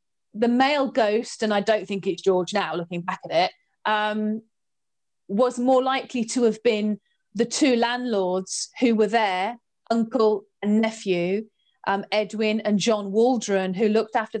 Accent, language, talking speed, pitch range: British, English, 160 wpm, 200-245 Hz